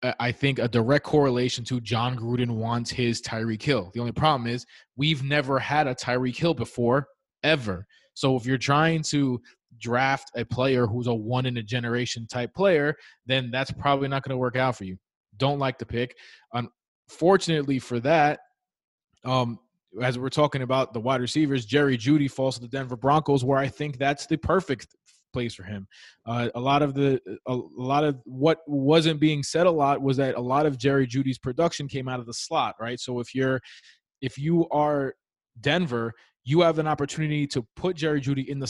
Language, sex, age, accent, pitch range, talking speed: English, male, 20-39, American, 125-145 Hz, 190 wpm